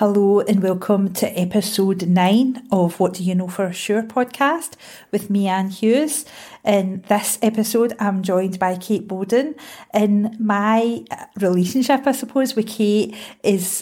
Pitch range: 180-215 Hz